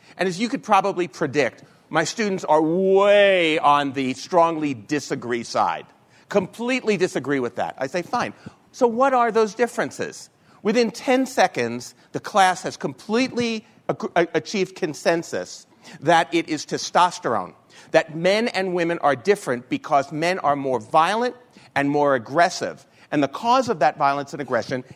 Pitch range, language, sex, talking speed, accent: 150-220 Hz, English, male, 150 wpm, American